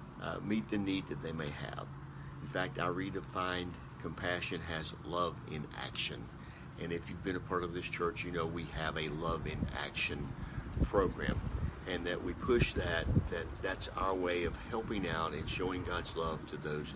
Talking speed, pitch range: 190 wpm, 80-100 Hz